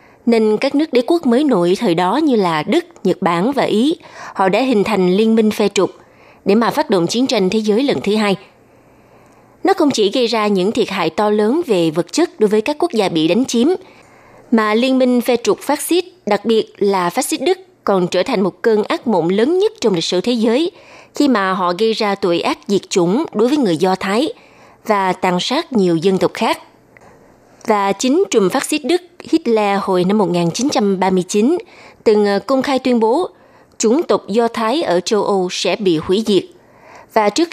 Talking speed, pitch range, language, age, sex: 210 wpm, 190-265 Hz, Vietnamese, 20-39, female